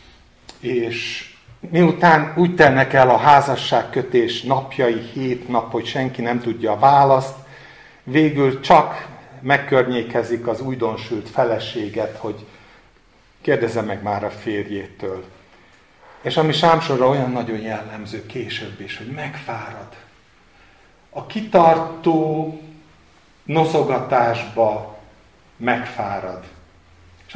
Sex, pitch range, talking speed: male, 115-165 Hz, 95 wpm